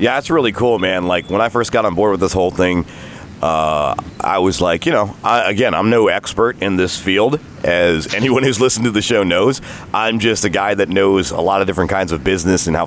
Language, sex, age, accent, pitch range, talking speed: English, male, 40-59, American, 90-115 Hz, 240 wpm